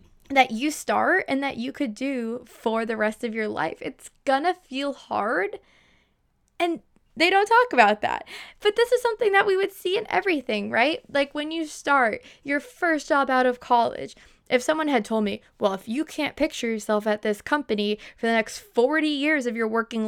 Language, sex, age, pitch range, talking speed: English, female, 10-29, 225-320 Hz, 200 wpm